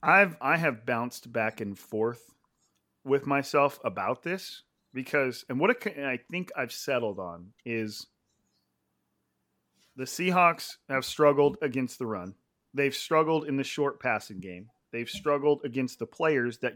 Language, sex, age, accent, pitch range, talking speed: English, male, 40-59, American, 120-150 Hz, 150 wpm